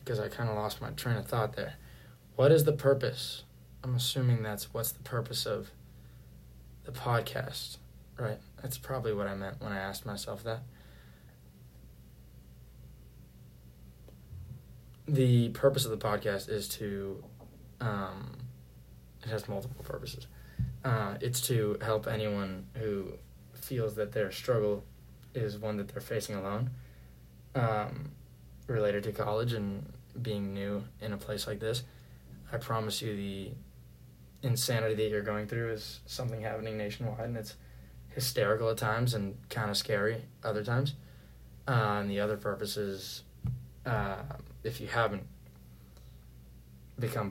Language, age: English, 20-39